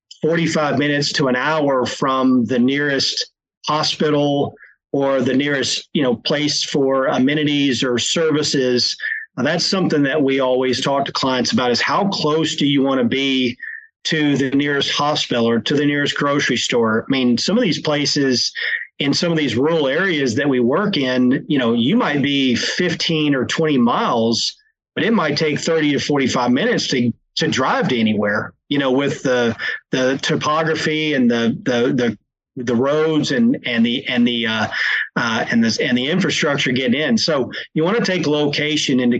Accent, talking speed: American, 180 wpm